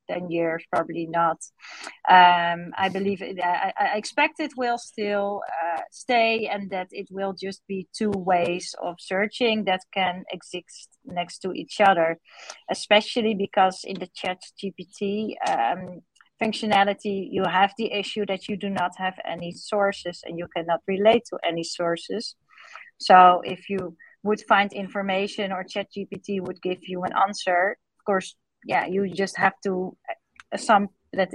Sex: female